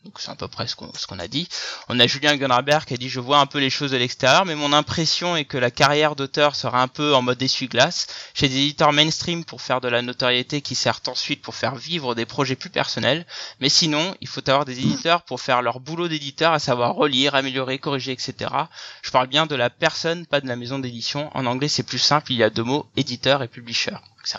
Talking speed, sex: 250 wpm, male